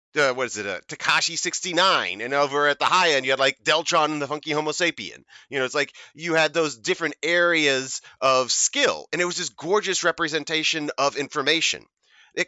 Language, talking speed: English, 200 wpm